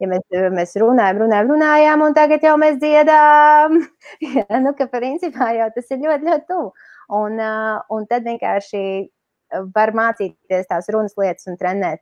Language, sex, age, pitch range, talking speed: English, female, 20-39, 190-280 Hz, 160 wpm